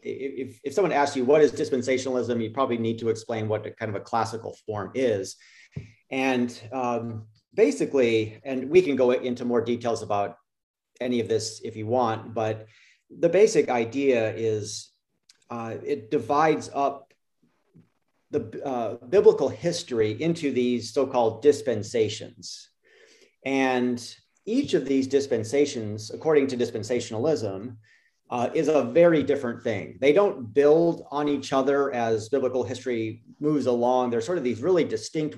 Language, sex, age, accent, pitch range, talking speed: English, male, 40-59, American, 115-145 Hz, 145 wpm